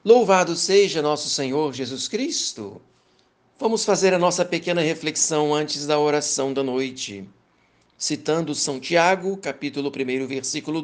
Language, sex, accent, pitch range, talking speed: Portuguese, male, Brazilian, 130-160 Hz, 125 wpm